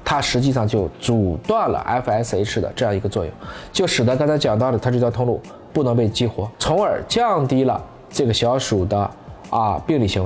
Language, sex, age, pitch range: Chinese, male, 20-39, 105-145 Hz